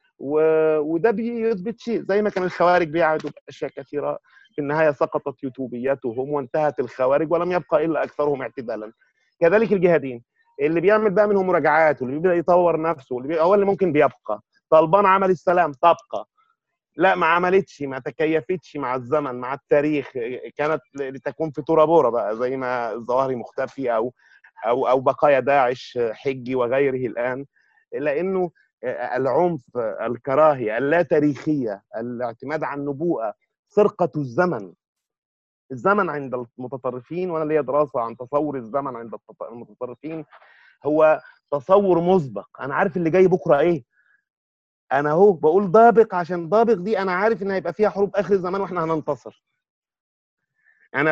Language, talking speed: Arabic, 135 wpm